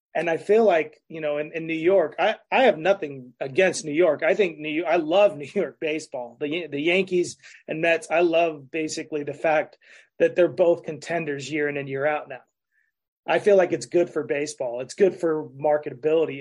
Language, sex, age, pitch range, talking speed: English, male, 30-49, 155-200 Hz, 205 wpm